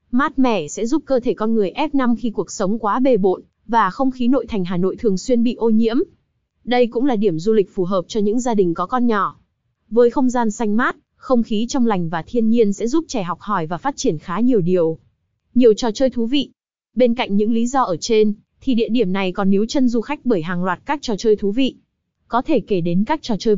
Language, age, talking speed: Vietnamese, 20-39, 260 wpm